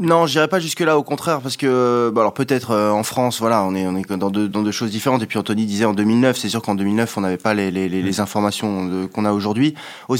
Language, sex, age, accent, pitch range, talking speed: French, male, 20-39, French, 110-140 Hz, 270 wpm